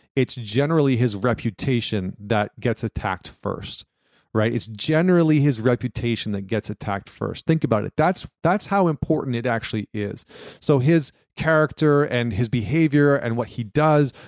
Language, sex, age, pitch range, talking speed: English, male, 30-49, 115-145 Hz, 155 wpm